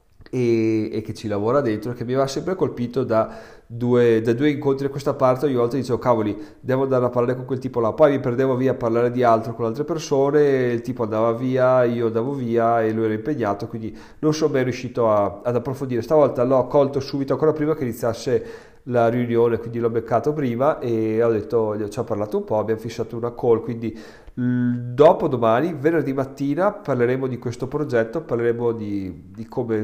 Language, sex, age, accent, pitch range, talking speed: Italian, male, 30-49, native, 110-130 Hz, 205 wpm